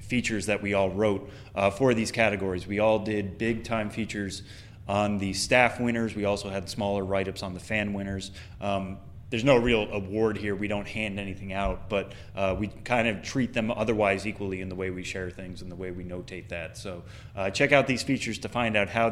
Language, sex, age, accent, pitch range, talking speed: English, male, 30-49, American, 95-115 Hz, 220 wpm